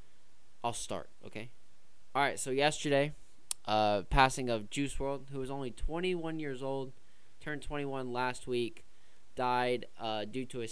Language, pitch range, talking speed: English, 110-130 Hz, 160 wpm